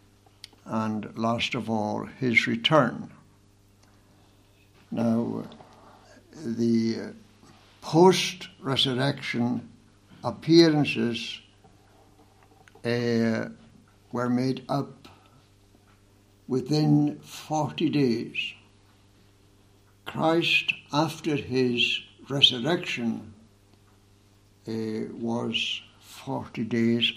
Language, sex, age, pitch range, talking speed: English, male, 60-79, 100-140 Hz, 55 wpm